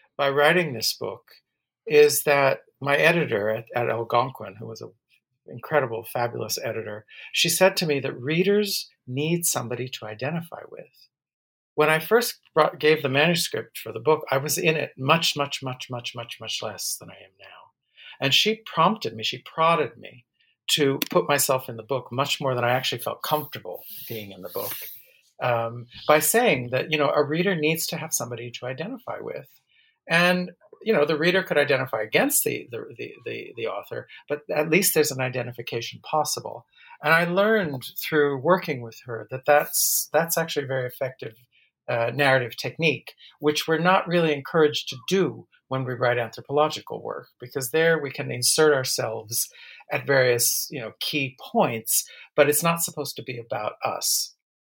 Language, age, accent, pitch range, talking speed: English, 50-69, American, 125-170 Hz, 175 wpm